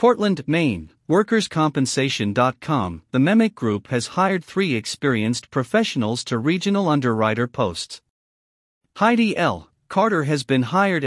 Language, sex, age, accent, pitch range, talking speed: English, male, 50-69, American, 120-175 Hz, 115 wpm